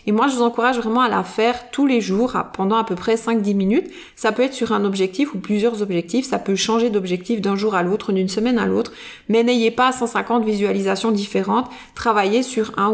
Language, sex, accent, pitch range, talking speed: French, female, French, 205-245 Hz, 225 wpm